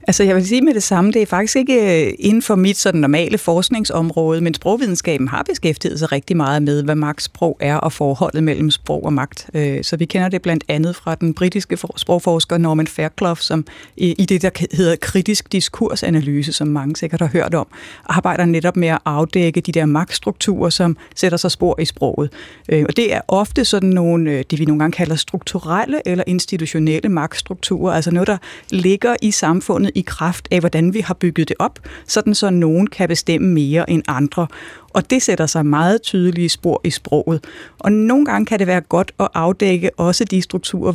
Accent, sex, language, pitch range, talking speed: native, female, Danish, 160-200 Hz, 195 wpm